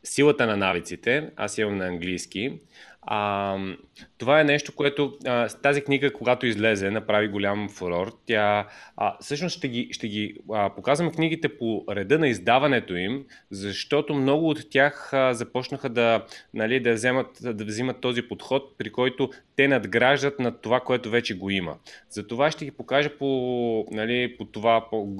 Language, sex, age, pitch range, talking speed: Bulgarian, male, 20-39, 110-140 Hz, 155 wpm